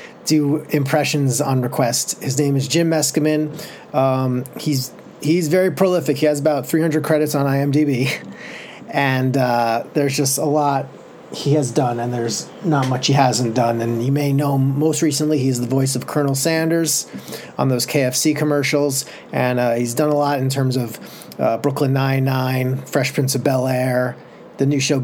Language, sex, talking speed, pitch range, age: English, male, 175 wpm, 130-155 Hz, 30-49